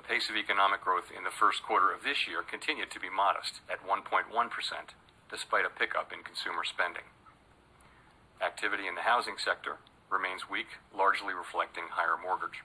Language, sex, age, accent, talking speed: English, male, 40-59, American, 165 wpm